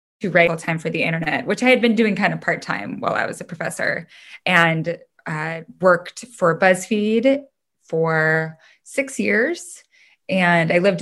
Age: 10-29